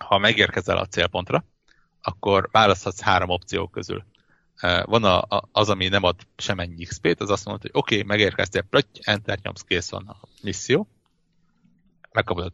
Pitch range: 95-135 Hz